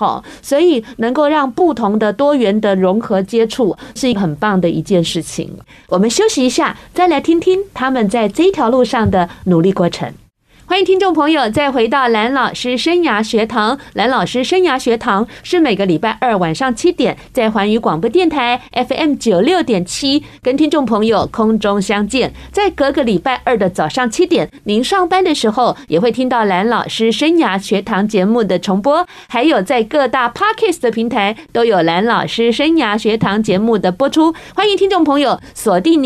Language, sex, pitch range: Chinese, female, 205-290 Hz